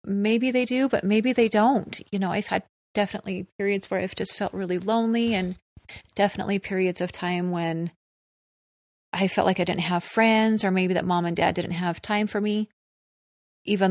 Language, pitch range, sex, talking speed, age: English, 175-210 Hz, female, 190 wpm, 30-49